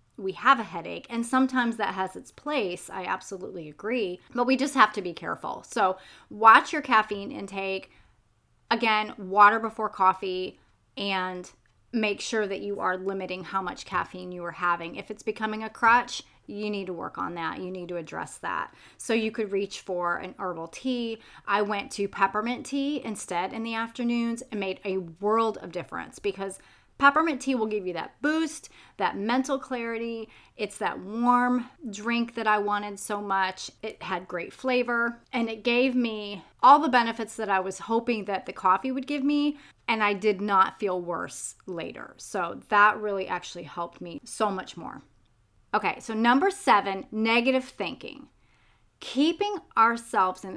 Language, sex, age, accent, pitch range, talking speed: English, female, 30-49, American, 190-240 Hz, 175 wpm